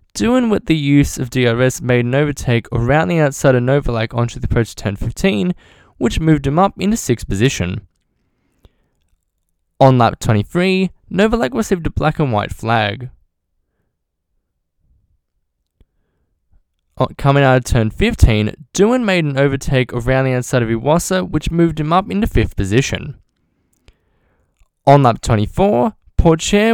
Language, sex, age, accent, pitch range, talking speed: English, male, 10-29, Australian, 110-160 Hz, 140 wpm